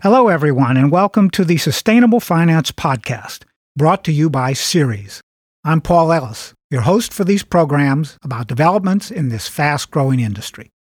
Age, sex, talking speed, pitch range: 50-69, male, 155 wpm, 145-185 Hz